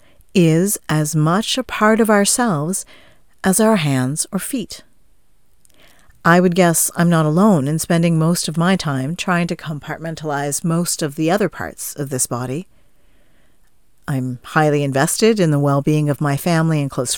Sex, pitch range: female, 145-200 Hz